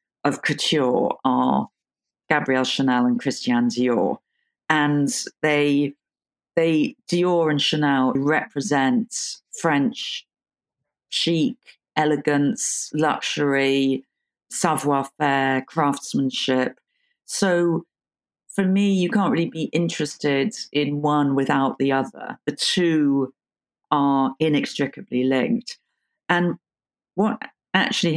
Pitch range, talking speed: 135-170 Hz, 90 wpm